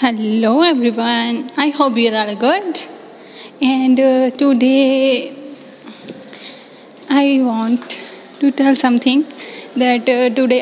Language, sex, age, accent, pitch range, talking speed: Hindi, female, 10-29, native, 240-270 Hz, 95 wpm